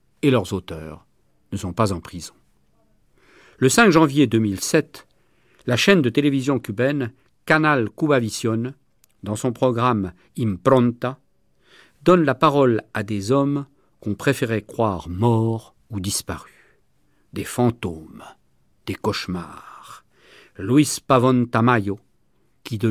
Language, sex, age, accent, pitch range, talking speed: French, male, 50-69, French, 100-130 Hz, 115 wpm